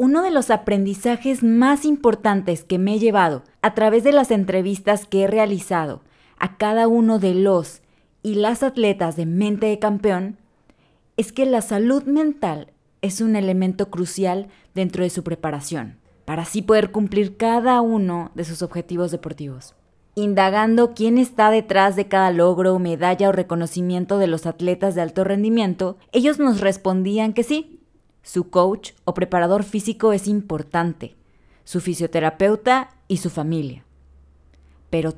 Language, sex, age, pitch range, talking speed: Spanish, female, 20-39, 175-215 Hz, 150 wpm